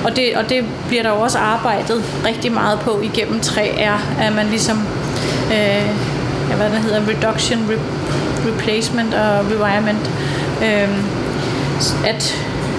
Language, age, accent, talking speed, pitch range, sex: Danish, 30-49, native, 125 wpm, 215-235 Hz, female